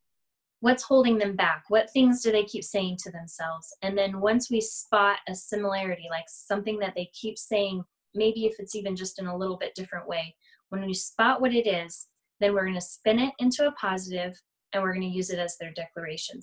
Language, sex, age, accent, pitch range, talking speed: English, female, 20-39, American, 190-230 Hz, 220 wpm